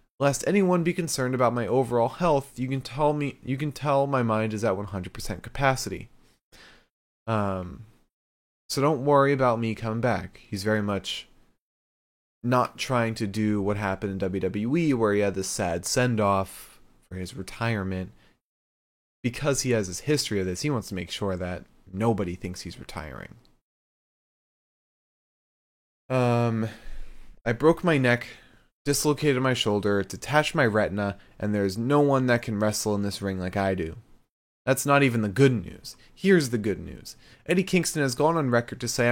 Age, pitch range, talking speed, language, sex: 20-39, 100-140 Hz, 165 wpm, English, male